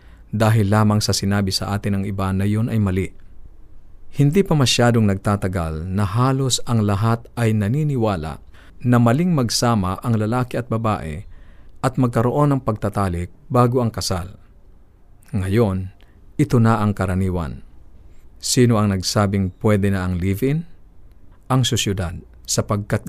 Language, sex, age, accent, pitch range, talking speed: Filipino, male, 50-69, native, 95-115 Hz, 135 wpm